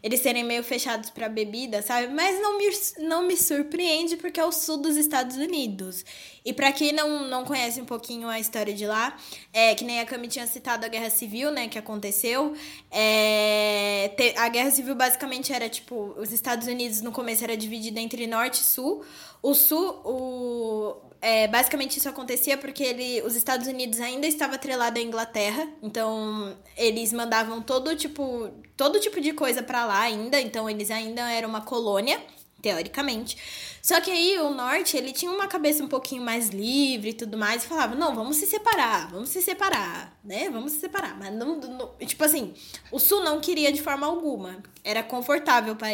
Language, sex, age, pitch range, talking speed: Portuguese, female, 10-29, 230-300 Hz, 185 wpm